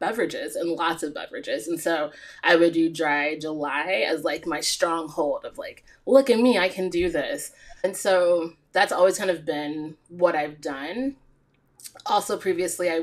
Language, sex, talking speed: English, female, 175 wpm